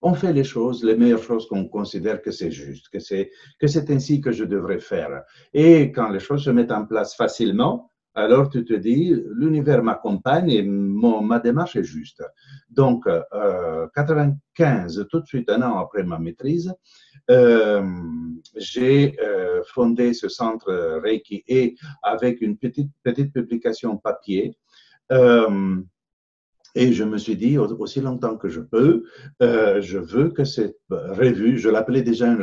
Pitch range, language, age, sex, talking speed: 105-145 Hz, French, 60-79, male, 165 wpm